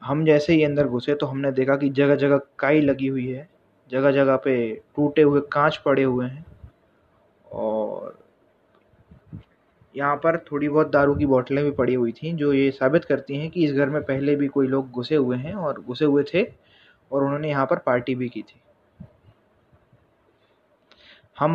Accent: native